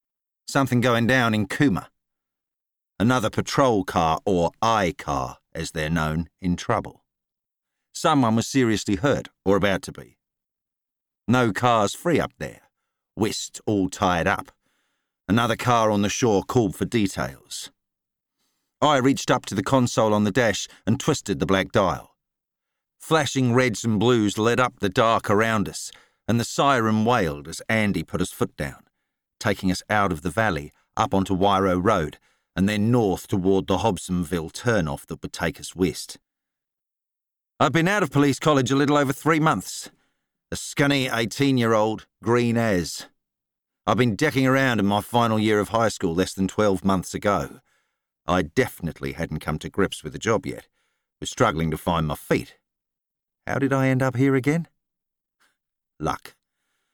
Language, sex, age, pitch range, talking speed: English, male, 50-69, 95-125 Hz, 160 wpm